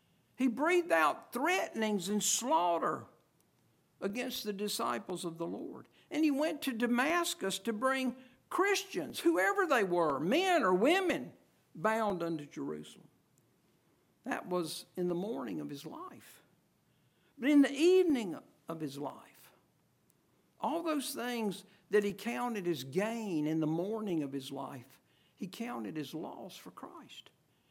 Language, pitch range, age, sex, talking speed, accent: English, 200-280 Hz, 60-79, male, 140 wpm, American